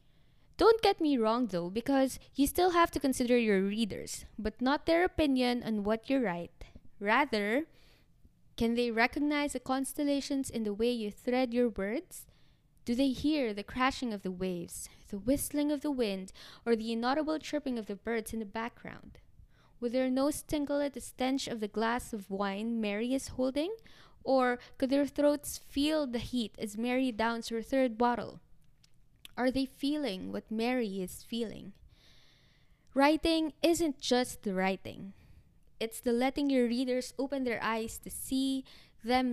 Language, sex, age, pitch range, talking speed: Filipino, female, 20-39, 225-280 Hz, 165 wpm